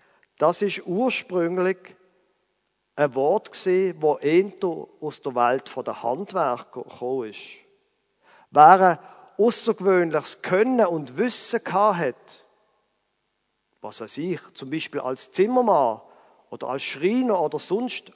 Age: 50-69